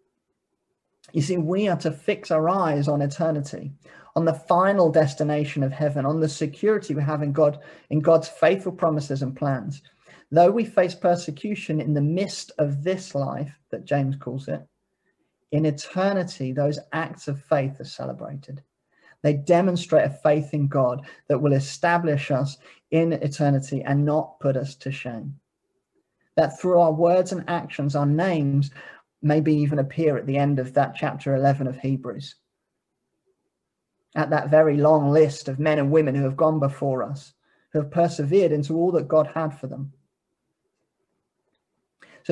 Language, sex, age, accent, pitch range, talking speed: English, male, 30-49, British, 140-170 Hz, 160 wpm